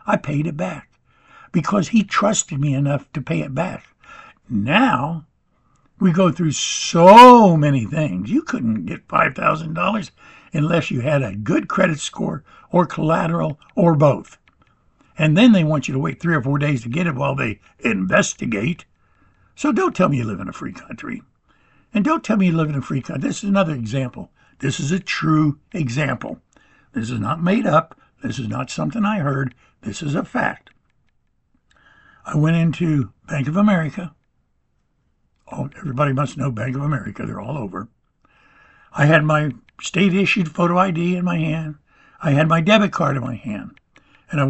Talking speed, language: 175 wpm, English